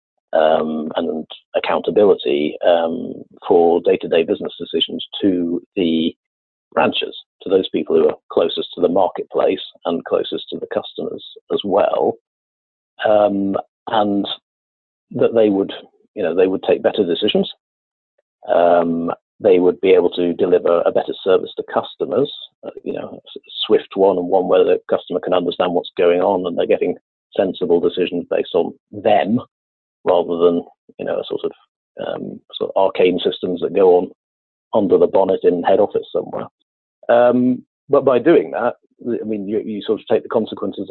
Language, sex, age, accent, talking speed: English, male, 50-69, British, 160 wpm